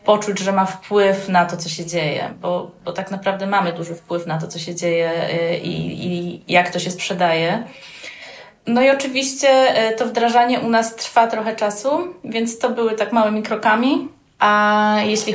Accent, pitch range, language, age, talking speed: native, 180-215 Hz, Polish, 20-39, 175 wpm